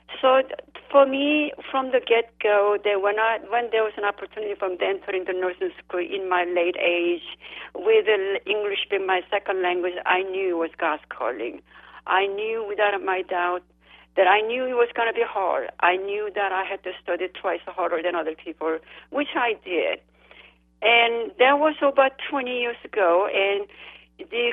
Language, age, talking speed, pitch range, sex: English, 50-69, 180 wpm, 185-260 Hz, female